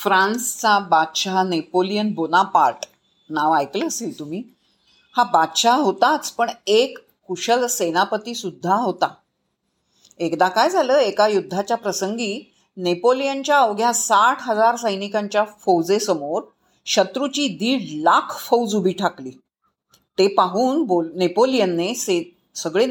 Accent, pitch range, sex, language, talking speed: native, 185-250 Hz, female, Marathi, 30 wpm